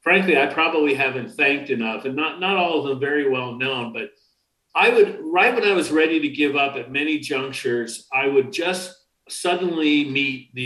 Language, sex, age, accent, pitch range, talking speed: English, male, 50-69, American, 130-175 Hz, 195 wpm